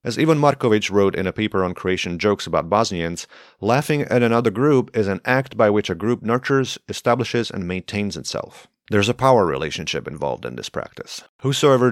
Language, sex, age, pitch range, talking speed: English, male, 40-59, 95-120 Hz, 185 wpm